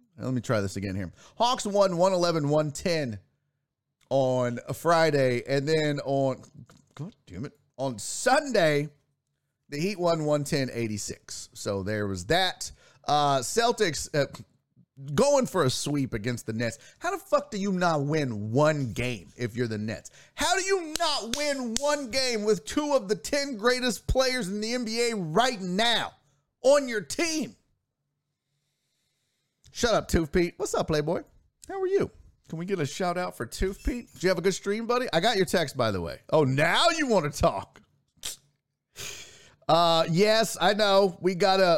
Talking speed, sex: 170 wpm, male